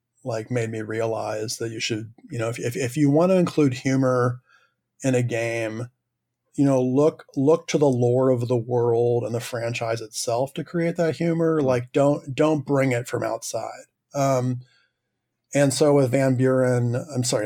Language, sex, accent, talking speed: English, male, American, 180 wpm